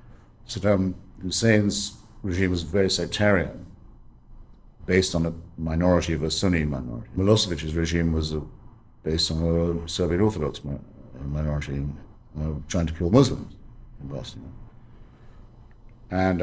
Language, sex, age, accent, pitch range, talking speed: English, male, 60-79, British, 85-110 Hz, 110 wpm